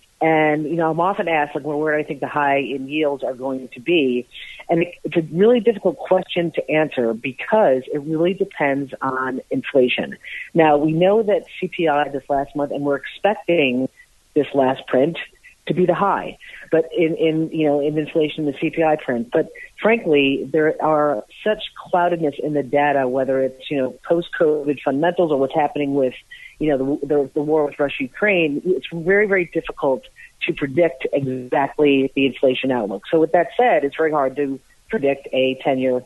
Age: 40-59